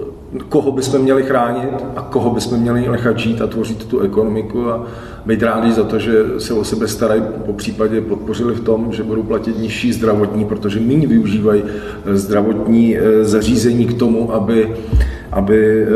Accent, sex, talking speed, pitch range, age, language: native, male, 160 wpm, 110-120 Hz, 40-59, Czech